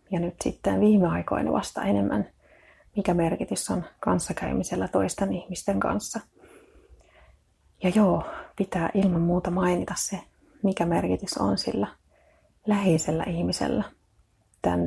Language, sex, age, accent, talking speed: Finnish, female, 30-49, native, 115 wpm